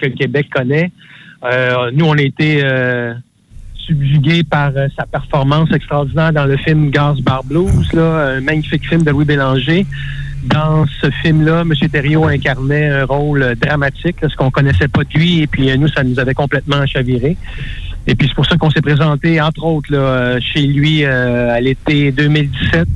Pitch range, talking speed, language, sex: 130-150 Hz, 180 wpm, French, male